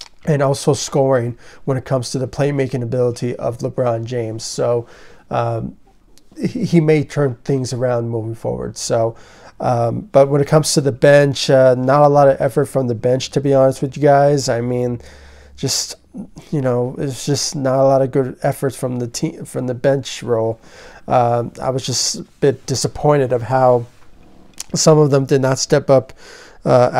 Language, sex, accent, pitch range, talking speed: English, male, American, 125-140 Hz, 185 wpm